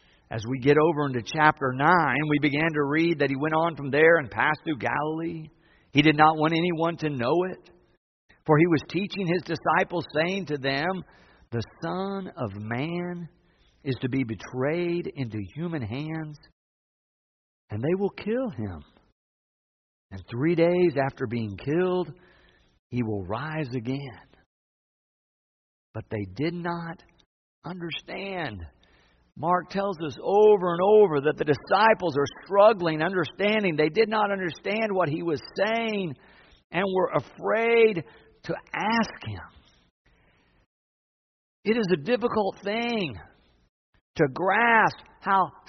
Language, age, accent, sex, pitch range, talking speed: English, 50-69, American, male, 140-205 Hz, 135 wpm